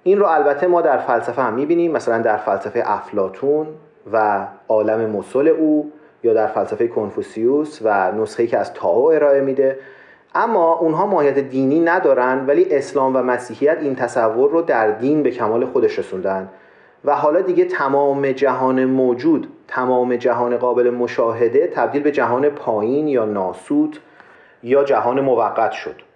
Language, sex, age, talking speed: Persian, male, 40-59, 145 wpm